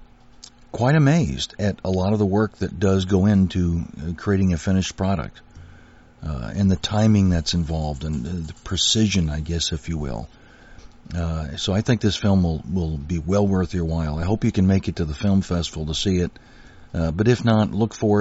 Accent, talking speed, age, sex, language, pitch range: American, 205 wpm, 50-69, male, English, 85-105 Hz